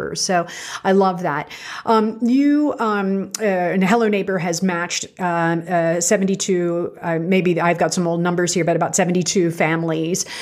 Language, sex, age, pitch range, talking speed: English, female, 40-59, 170-200 Hz, 160 wpm